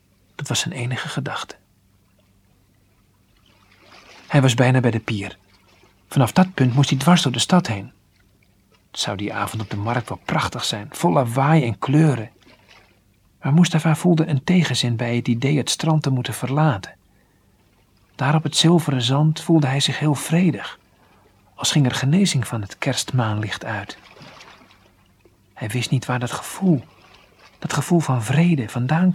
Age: 40-59